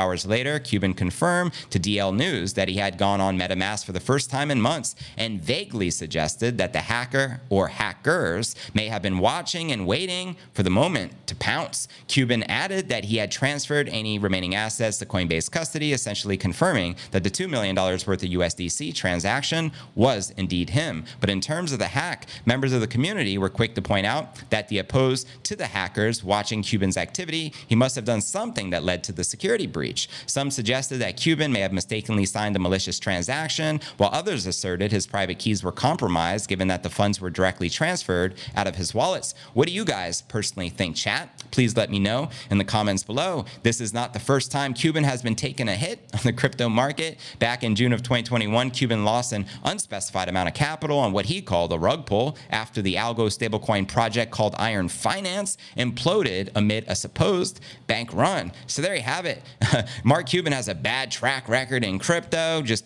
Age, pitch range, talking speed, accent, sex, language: 30-49, 95-130 Hz, 200 wpm, American, male, English